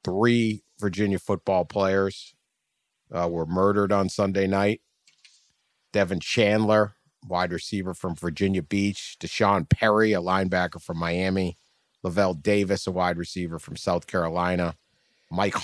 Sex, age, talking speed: male, 40-59, 125 wpm